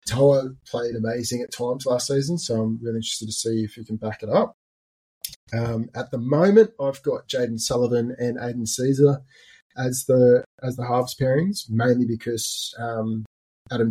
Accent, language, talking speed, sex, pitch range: Australian, English, 175 wpm, male, 115-135 Hz